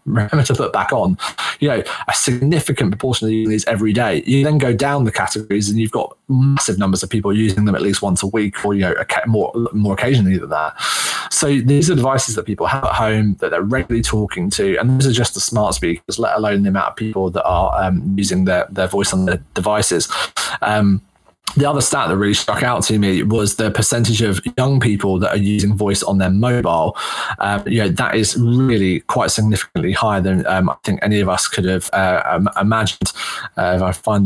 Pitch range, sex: 100-120 Hz, male